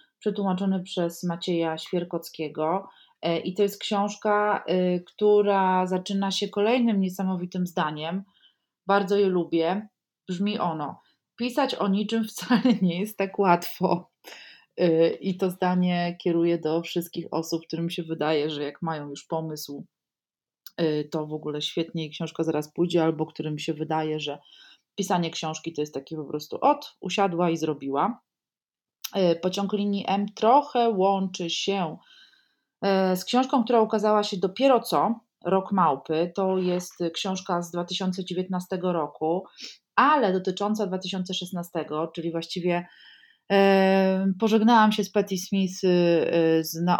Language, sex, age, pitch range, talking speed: Polish, female, 30-49, 165-200 Hz, 125 wpm